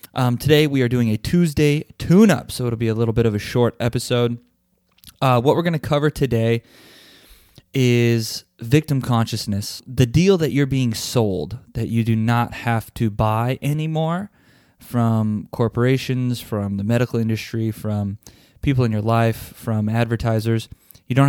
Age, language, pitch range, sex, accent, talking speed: 20-39, English, 110-130 Hz, male, American, 160 wpm